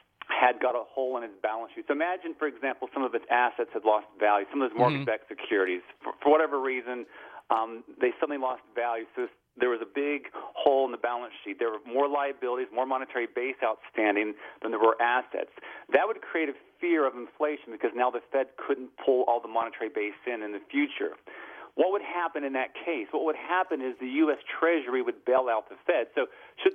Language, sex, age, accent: English, male, 40-59, American